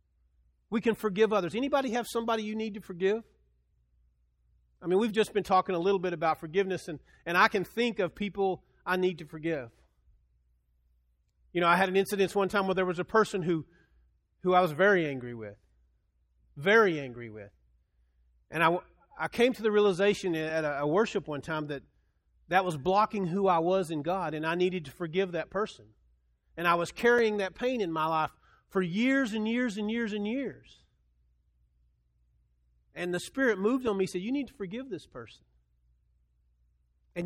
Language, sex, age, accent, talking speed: English, male, 40-59, American, 185 wpm